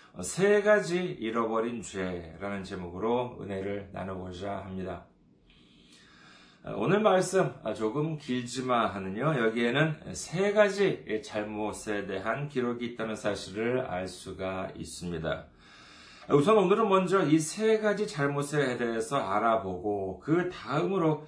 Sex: male